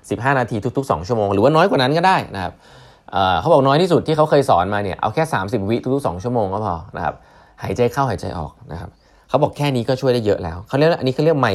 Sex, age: male, 20-39